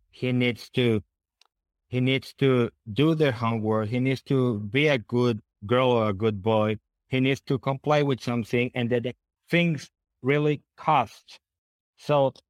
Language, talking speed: English, 160 wpm